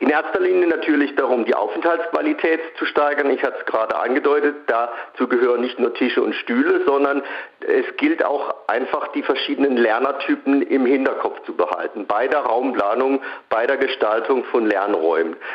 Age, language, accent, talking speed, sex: 50-69, German, German, 160 wpm, male